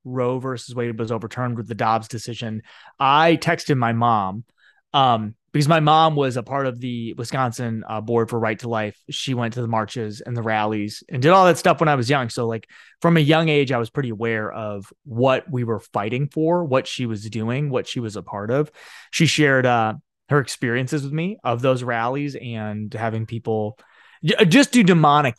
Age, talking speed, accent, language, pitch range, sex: 30-49, 210 wpm, American, English, 115-145 Hz, male